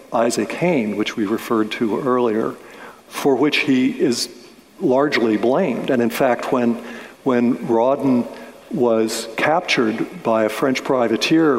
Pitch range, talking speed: 115-140 Hz, 130 wpm